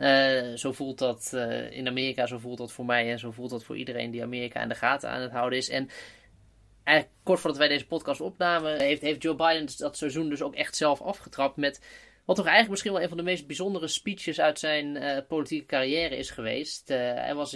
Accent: Dutch